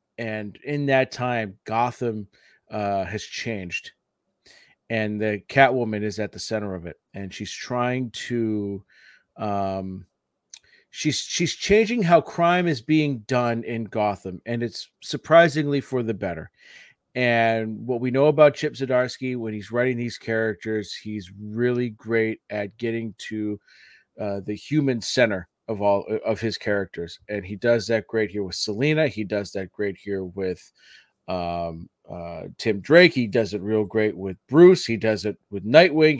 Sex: male